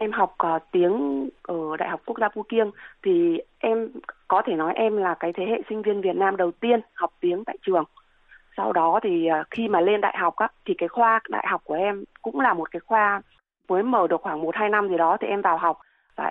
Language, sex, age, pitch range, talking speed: Vietnamese, female, 20-39, 170-220 Hz, 235 wpm